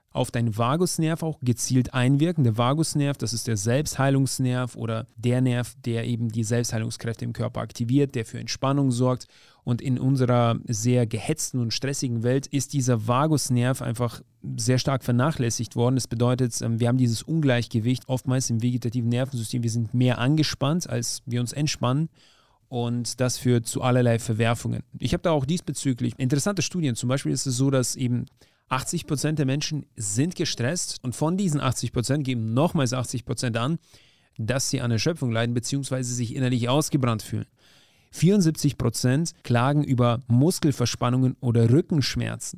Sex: male